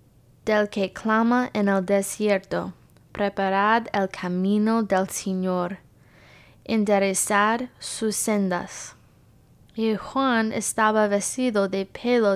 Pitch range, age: 200-225 Hz, 20-39